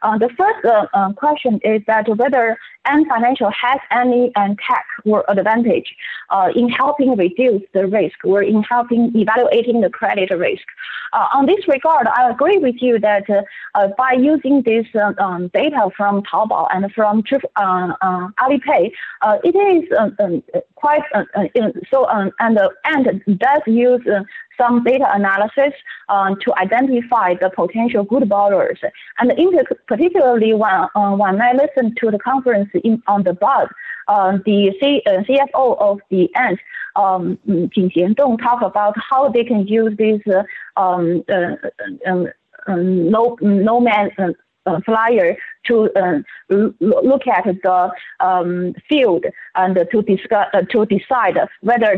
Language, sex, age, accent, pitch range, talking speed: English, female, 30-49, Chinese, 200-265 Hz, 160 wpm